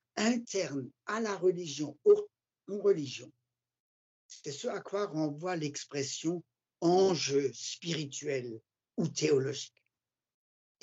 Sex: male